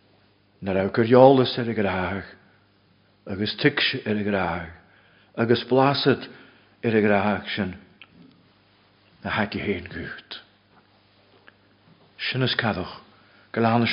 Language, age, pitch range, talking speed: English, 60-79, 105-120 Hz, 75 wpm